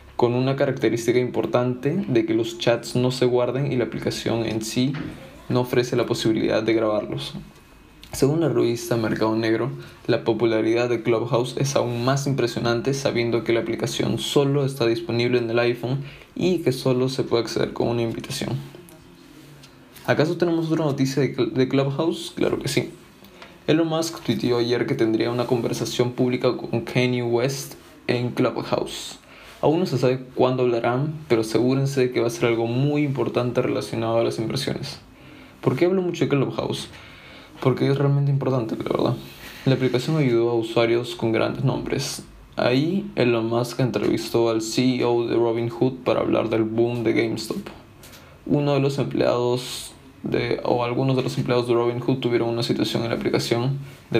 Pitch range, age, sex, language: 115-135 Hz, 20-39, male, Spanish